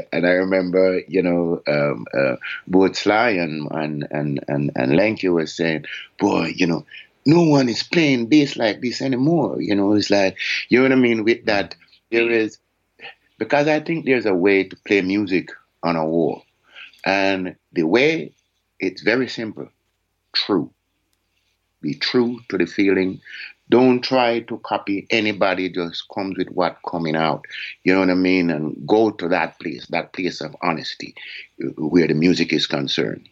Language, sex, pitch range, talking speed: English, male, 90-115 Hz, 170 wpm